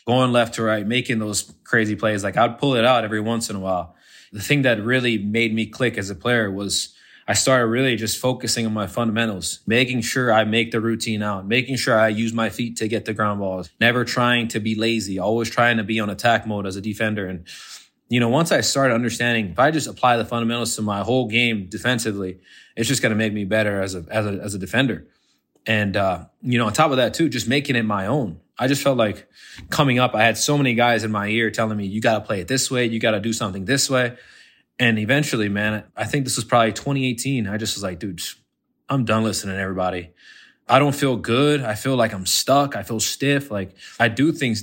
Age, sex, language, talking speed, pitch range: 20-39, male, English, 245 wpm, 105-125 Hz